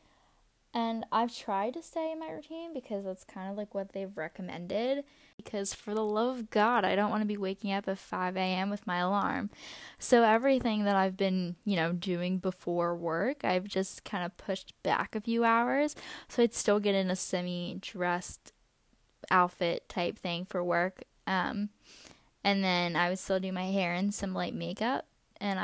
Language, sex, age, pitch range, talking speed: English, female, 10-29, 185-225 Hz, 185 wpm